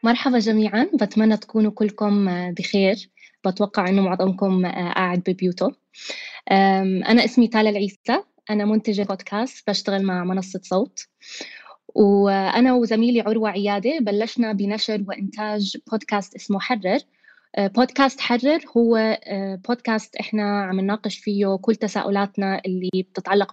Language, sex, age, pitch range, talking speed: Arabic, female, 20-39, 195-225 Hz, 110 wpm